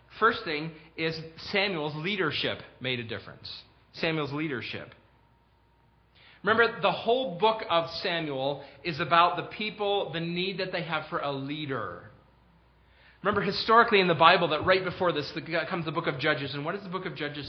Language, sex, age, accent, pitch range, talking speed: English, male, 40-59, American, 135-180 Hz, 170 wpm